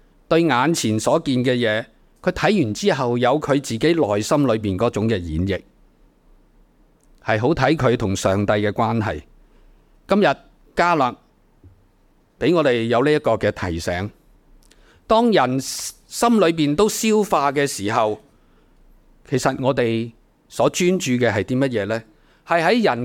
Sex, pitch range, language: male, 110-170 Hz, Chinese